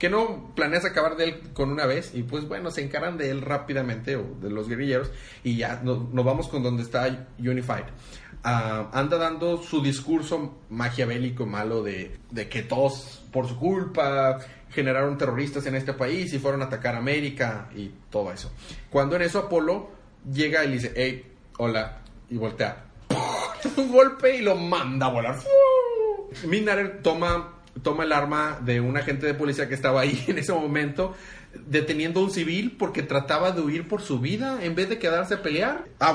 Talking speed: 190 wpm